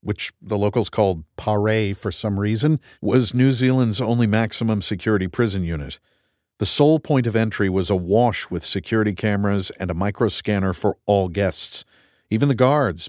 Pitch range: 95-150 Hz